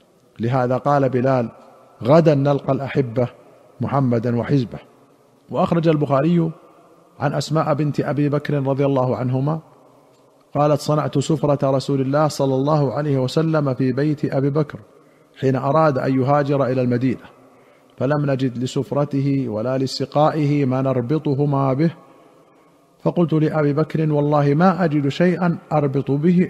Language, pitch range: Arabic, 135-155 Hz